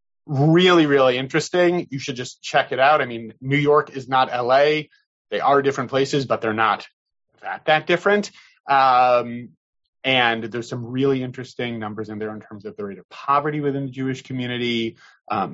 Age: 30-49